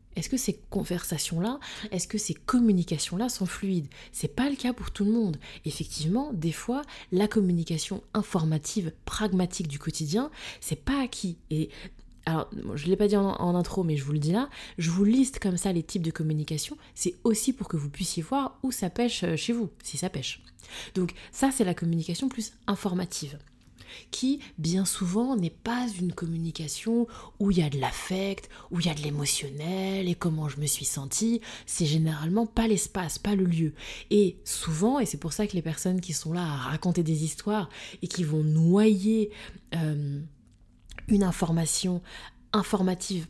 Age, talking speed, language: 20-39, 185 wpm, French